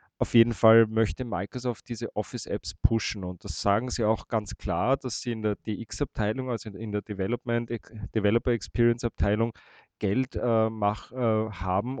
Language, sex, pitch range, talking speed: German, male, 105-120 Hz, 150 wpm